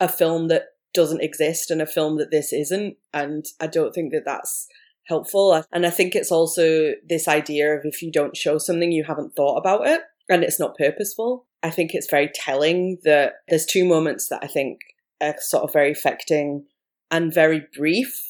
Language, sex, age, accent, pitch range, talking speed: English, female, 20-39, British, 145-170 Hz, 195 wpm